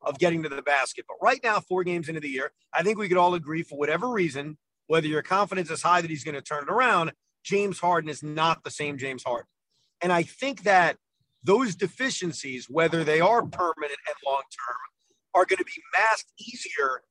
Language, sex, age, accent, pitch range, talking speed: English, male, 40-59, American, 160-245 Hz, 210 wpm